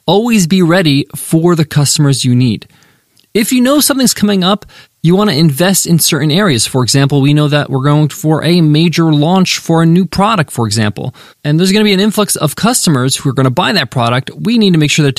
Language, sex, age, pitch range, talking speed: English, male, 20-39, 140-180 Hz, 235 wpm